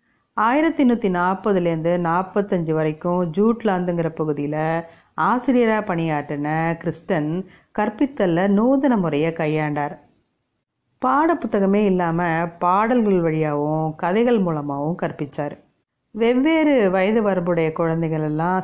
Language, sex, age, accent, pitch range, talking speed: Tamil, female, 30-49, native, 160-215 Hz, 85 wpm